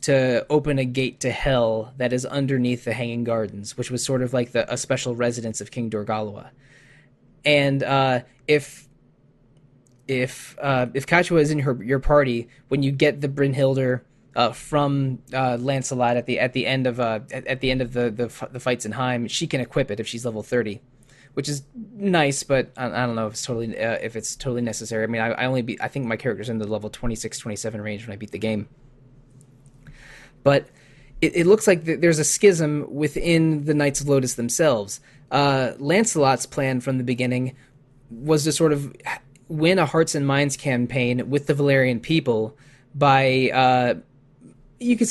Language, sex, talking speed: English, male, 195 wpm